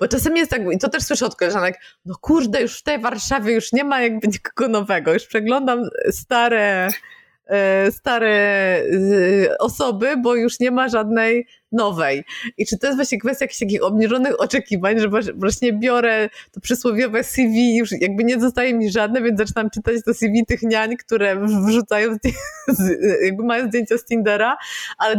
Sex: female